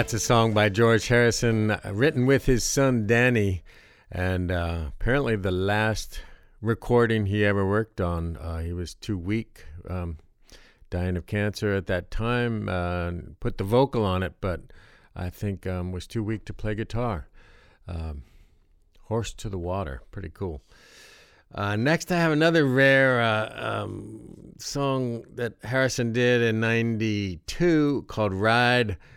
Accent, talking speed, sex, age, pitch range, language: American, 150 wpm, male, 50-69, 90-120 Hz, English